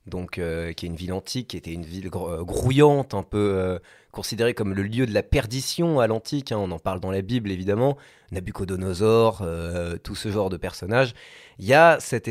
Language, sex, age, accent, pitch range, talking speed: French, male, 30-49, French, 105-135 Hz, 215 wpm